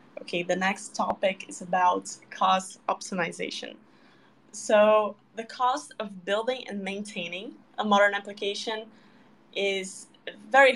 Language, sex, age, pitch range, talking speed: English, female, 10-29, 190-230 Hz, 110 wpm